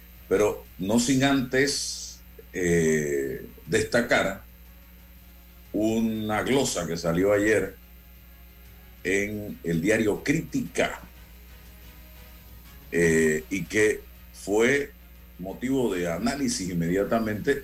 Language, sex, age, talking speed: Spanish, male, 50-69, 75 wpm